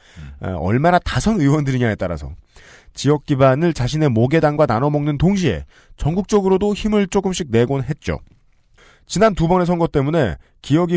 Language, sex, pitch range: Korean, male, 110-170 Hz